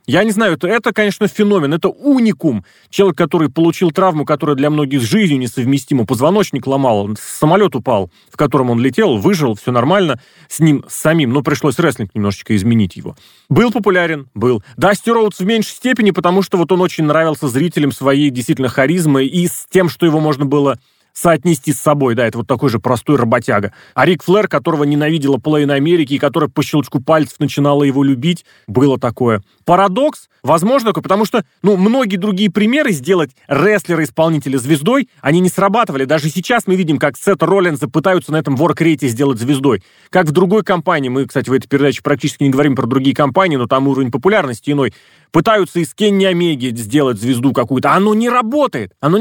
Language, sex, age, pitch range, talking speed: Russian, male, 30-49, 135-190 Hz, 180 wpm